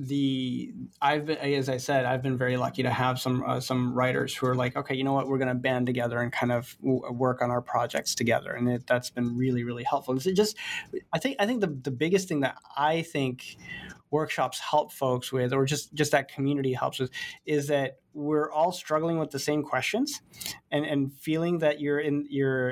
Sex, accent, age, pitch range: male, American, 20-39, 130-155 Hz